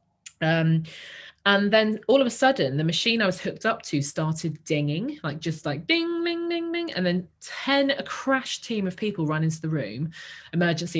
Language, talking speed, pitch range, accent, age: English, 195 wpm, 145-215 Hz, British, 20-39